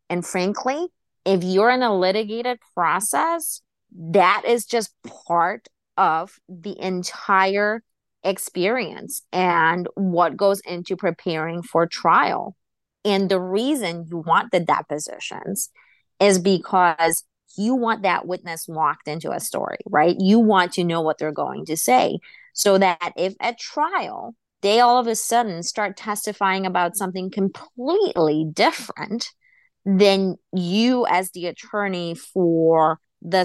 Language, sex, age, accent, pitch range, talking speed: English, female, 30-49, American, 170-205 Hz, 130 wpm